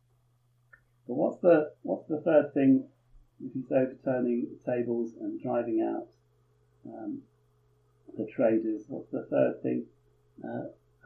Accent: British